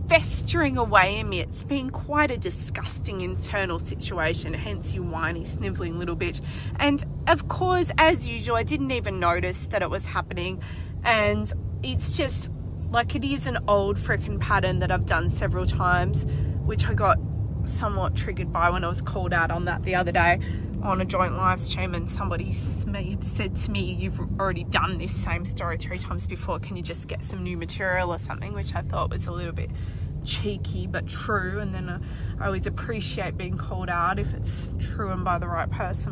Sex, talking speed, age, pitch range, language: female, 190 wpm, 20-39, 90-120 Hz, English